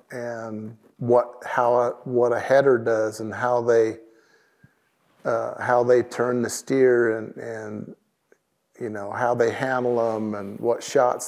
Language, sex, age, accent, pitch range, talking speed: English, male, 50-69, American, 120-130 Hz, 150 wpm